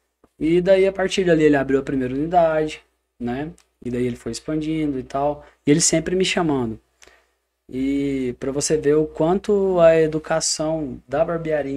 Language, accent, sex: Portuguese, Brazilian, male